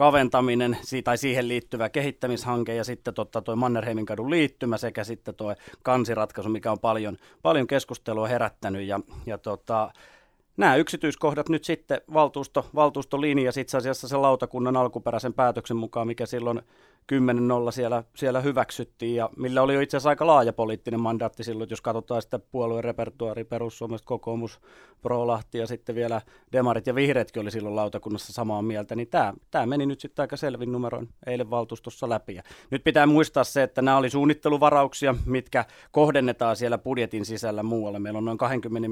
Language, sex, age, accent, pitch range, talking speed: Finnish, male, 30-49, native, 115-130 Hz, 165 wpm